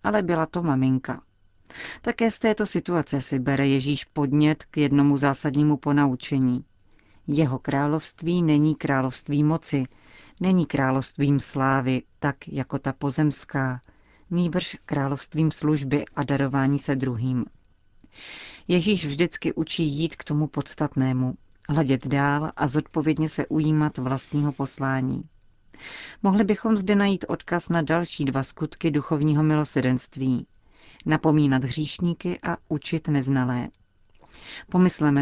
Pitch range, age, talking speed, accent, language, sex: 140-160 Hz, 40-59, 115 wpm, native, Czech, female